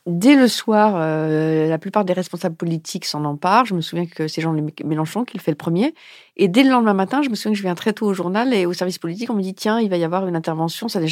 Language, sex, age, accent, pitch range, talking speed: French, female, 40-59, French, 160-190 Hz, 290 wpm